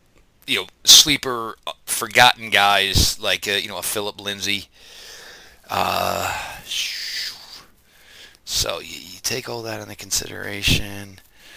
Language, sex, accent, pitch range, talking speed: English, male, American, 105-145 Hz, 105 wpm